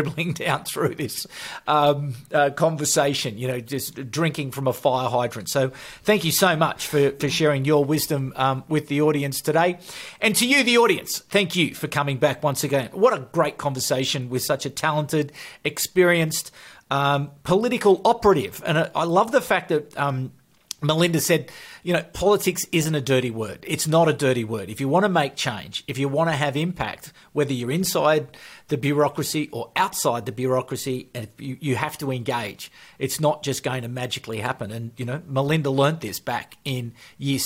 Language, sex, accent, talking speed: English, male, Australian, 185 wpm